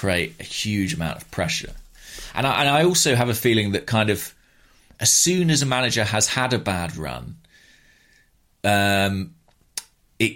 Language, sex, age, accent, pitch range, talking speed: English, male, 30-49, British, 90-120 Hz, 160 wpm